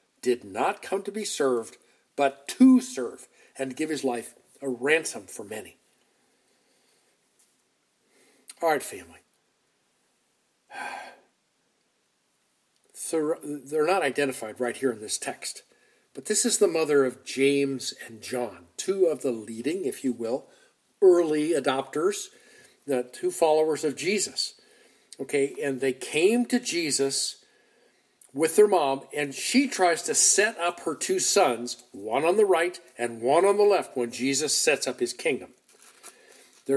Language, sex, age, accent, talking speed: English, male, 50-69, American, 140 wpm